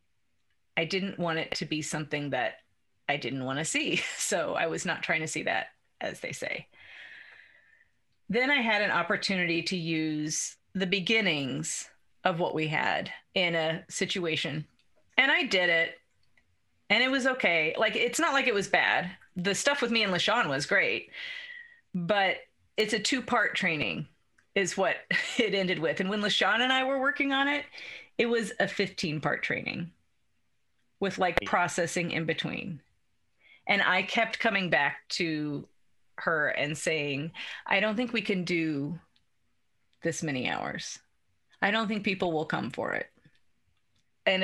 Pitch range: 155-210 Hz